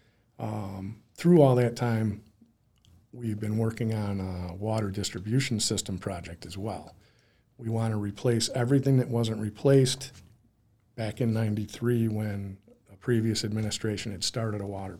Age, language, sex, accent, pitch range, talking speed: 50-69, English, male, American, 100-120 Hz, 140 wpm